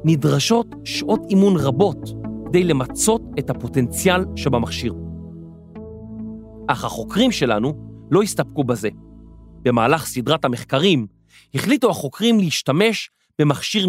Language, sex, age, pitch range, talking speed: Hebrew, male, 40-59, 130-205 Hz, 95 wpm